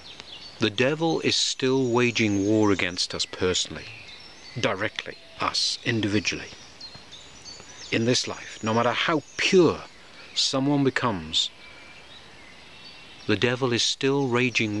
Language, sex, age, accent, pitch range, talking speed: English, male, 50-69, British, 105-135 Hz, 105 wpm